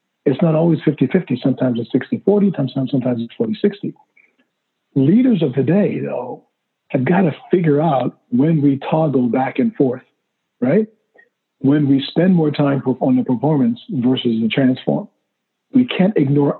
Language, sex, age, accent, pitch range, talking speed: English, male, 50-69, American, 135-195 Hz, 150 wpm